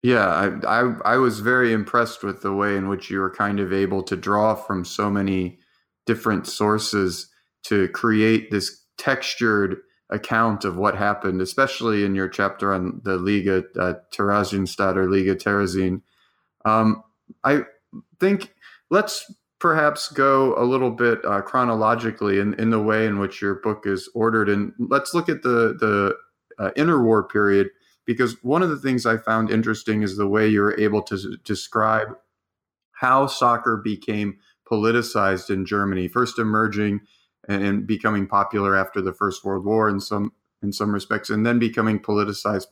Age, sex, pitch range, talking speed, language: 30-49, male, 100-115 Hz, 165 wpm, English